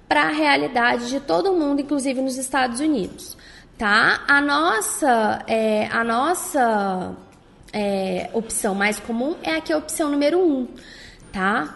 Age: 10-29